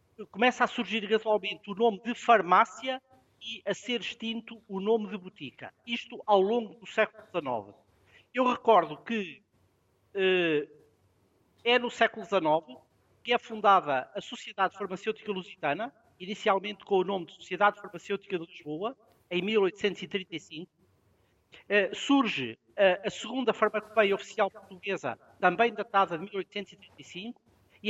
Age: 50-69